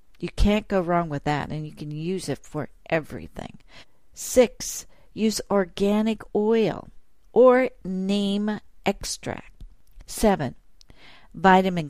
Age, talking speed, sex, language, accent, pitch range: 60-79, 110 wpm, female, English, American, 155-200 Hz